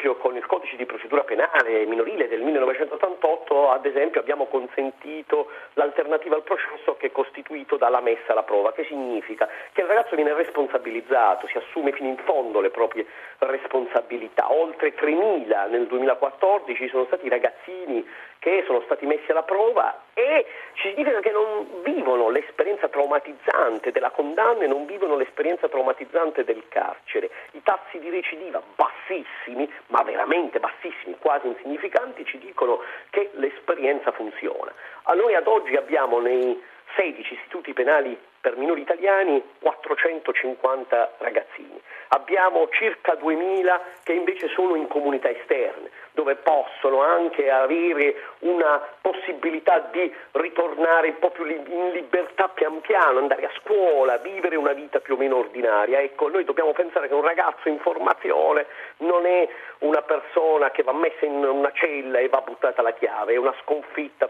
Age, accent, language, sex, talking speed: 40-59, native, Italian, male, 145 wpm